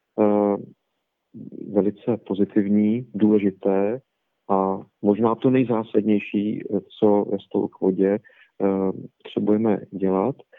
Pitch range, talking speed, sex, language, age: 100-110 Hz, 85 wpm, male, Czech, 40-59